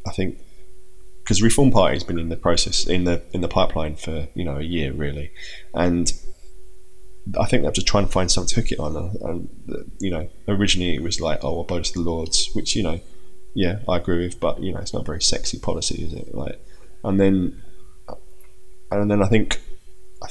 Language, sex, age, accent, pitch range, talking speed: English, male, 20-39, British, 85-100 Hz, 215 wpm